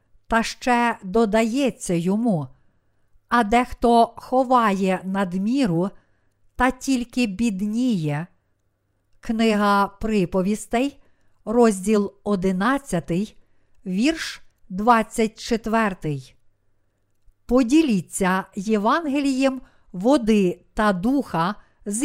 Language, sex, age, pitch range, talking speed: Ukrainian, female, 50-69, 185-250 Hz, 65 wpm